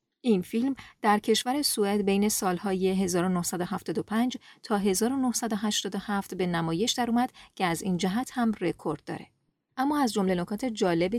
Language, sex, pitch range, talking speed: Persian, female, 175-225 Hz, 135 wpm